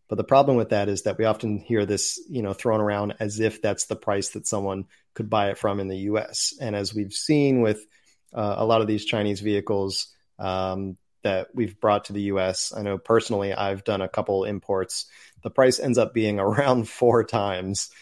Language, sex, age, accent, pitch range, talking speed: English, male, 30-49, American, 95-115 Hz, 215 wpm